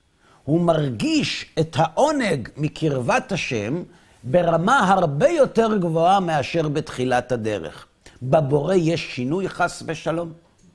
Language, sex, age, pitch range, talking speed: Hebrew, male, 50-69, 125-195 Hz, 100 wpm